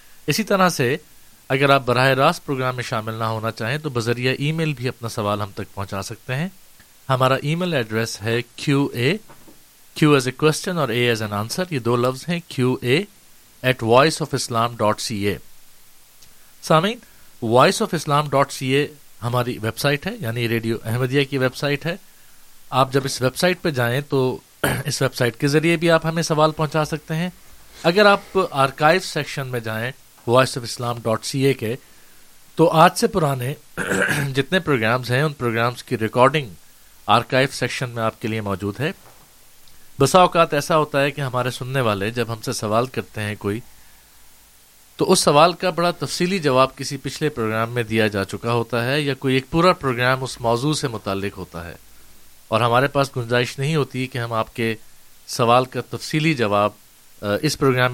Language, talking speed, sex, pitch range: Urdu, 145 wpm, male, 115-150 Hz